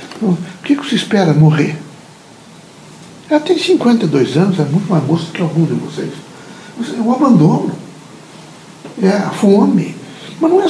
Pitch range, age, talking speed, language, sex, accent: 155-215 Hz, 60-79, 150 wpm, Portuguese, male, Brazilian